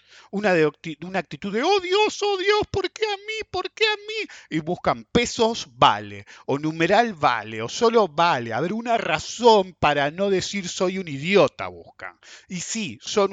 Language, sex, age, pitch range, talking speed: English, male, 50-69, 115-195 Hz, 180 wpm